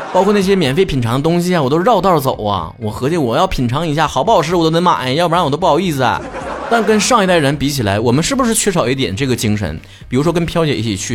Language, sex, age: Chinese, male, 30-49